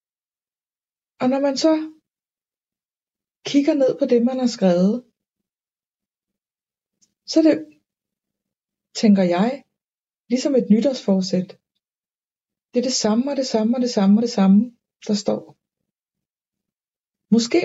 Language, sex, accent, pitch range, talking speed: Danish, female, native, 205-255 Hz, 120 wpm